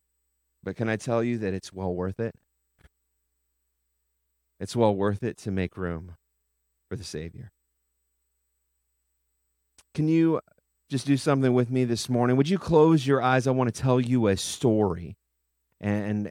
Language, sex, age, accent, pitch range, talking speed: English, male, 30-49, American, 105-155 Hz, 155 wpm